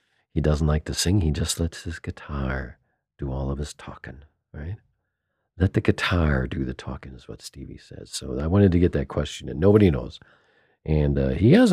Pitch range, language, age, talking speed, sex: 70-95 Hz, English, 50-69, 205 wpm, male